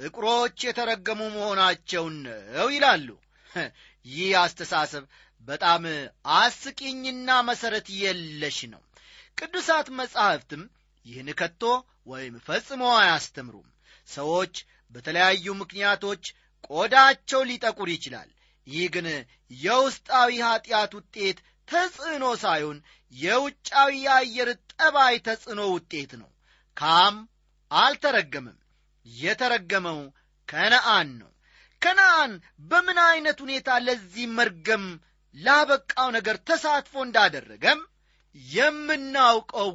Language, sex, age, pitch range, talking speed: Amharic, male, 30-49, 165-260 Hz, 75 wpm